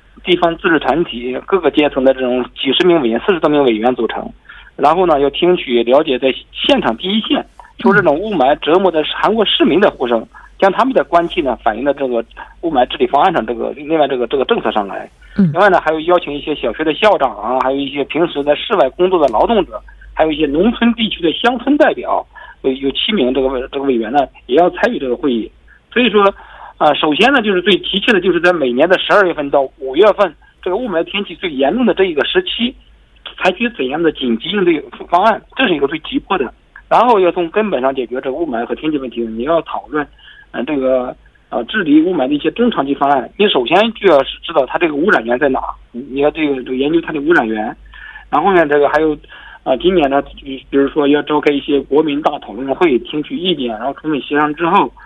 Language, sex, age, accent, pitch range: Korean, male, 50-69, Chinese, 135-205 Hz